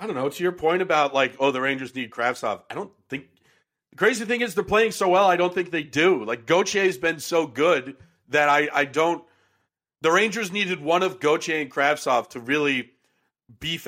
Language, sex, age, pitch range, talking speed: English, male, 40-59, 135-180 Hz, 210 wpm